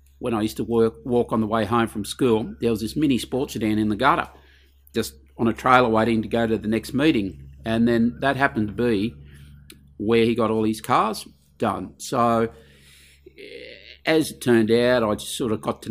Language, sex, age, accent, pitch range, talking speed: English, male, 50-69, Australian, 105-120 Hz, 210 wpm